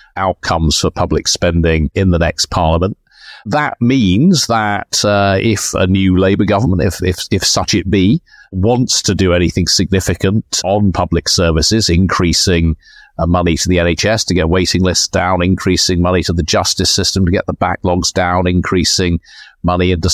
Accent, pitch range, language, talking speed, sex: British, 90-105 Hz, English, 165 wpm, male